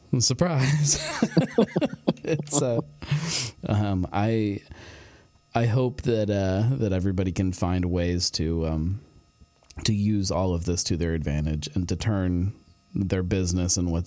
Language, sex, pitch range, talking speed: English, male, 85-100 Hz, 130 wpm